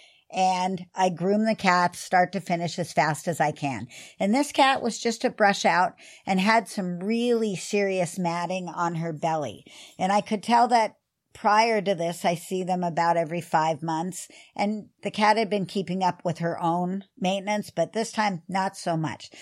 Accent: American